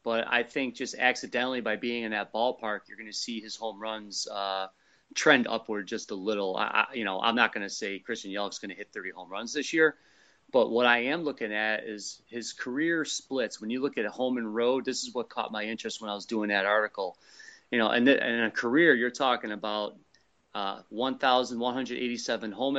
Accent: American